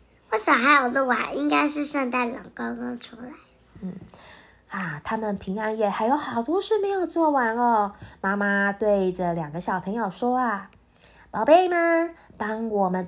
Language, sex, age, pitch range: Chinese, female, 20-39, 195-275 Hz